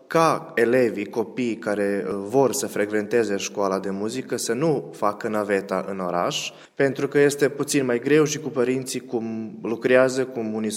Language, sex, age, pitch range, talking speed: Romanian, male, 20-39, 110-150 Hz, 160 wpm